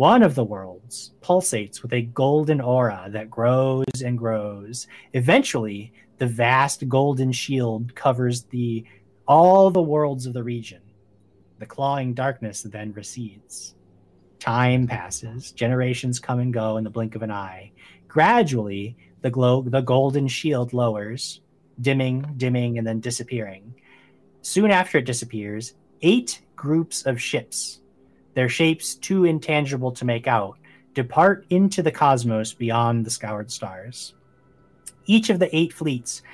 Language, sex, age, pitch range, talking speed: English, male, 30-49, 110-135 Hz, 135 wpm